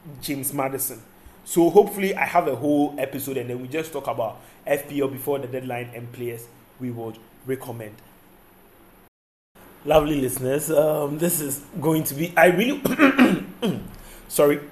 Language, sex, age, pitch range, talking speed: English, male, 20-39, 125-165 Hz, 145 wpm